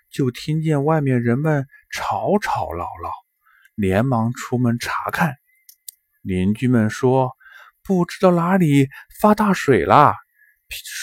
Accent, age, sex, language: native, 20-39, male, Chinese